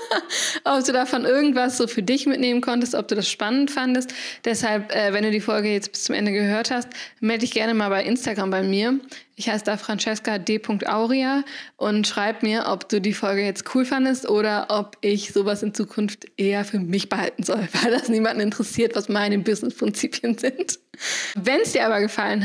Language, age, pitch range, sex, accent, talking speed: German, 20-39, 205-240 Hz, female, German, 195 wpm